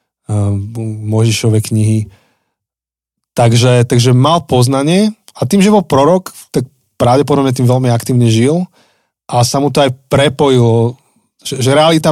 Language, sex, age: Slovak, male, 20-39